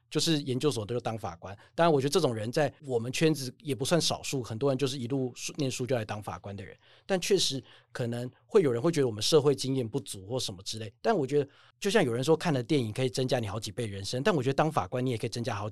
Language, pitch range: Chinese, 115-150 Hz